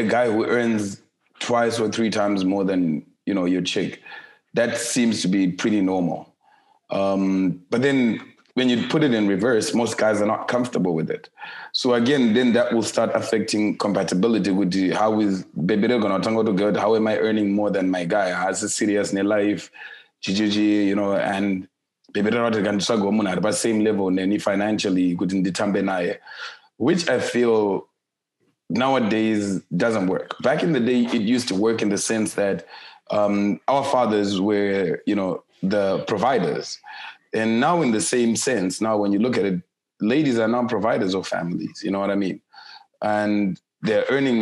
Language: English